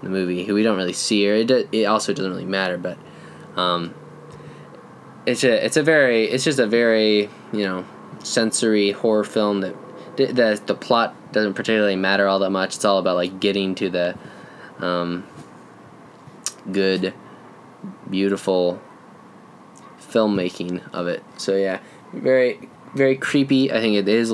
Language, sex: English, male